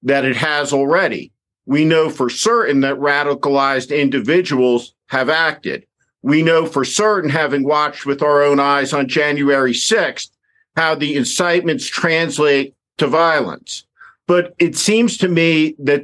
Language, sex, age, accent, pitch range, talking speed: English, male, 50-69, American, 140-175 Hz, 140 wpm